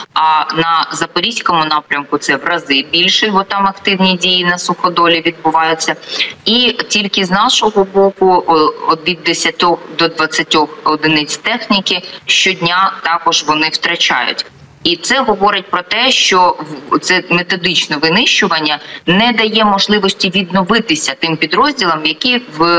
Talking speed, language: 125 wpm, Ukrainian